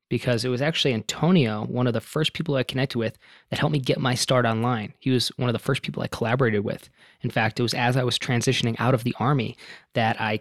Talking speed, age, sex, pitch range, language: 255 wpm, 20-39, male, 110-125 Hz, English